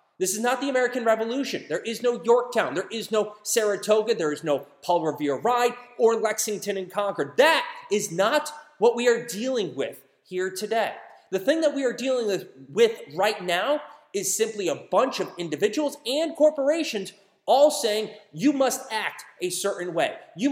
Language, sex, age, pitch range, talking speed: English, male, 30-49, 190-265 Hz, 175 wpm